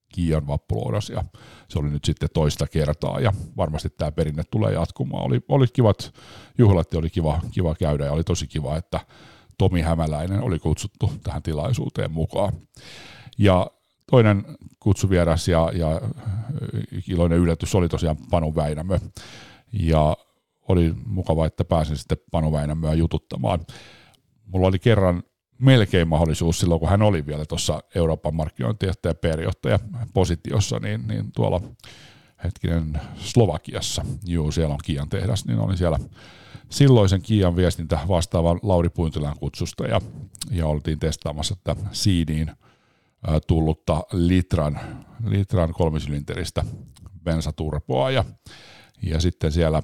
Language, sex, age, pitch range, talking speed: Finnish, male, 50-69, 80-105 Hz, 125 wpm